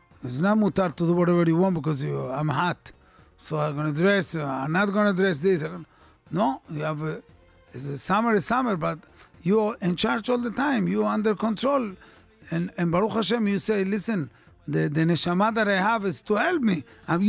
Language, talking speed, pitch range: English, 200 wpm, 145-205 Hz